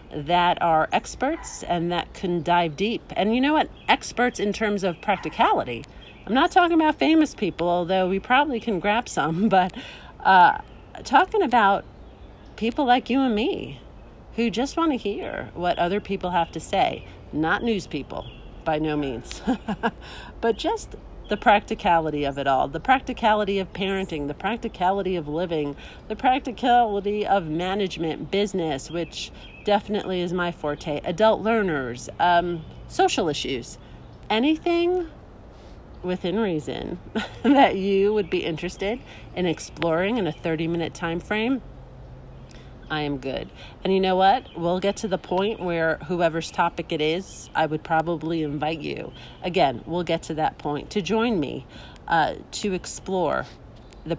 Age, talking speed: 40-59, 150 wpm